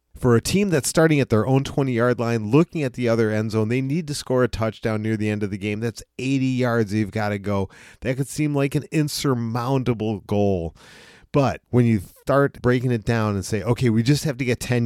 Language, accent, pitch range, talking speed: English, American, 105-130 Hz, 240 wpm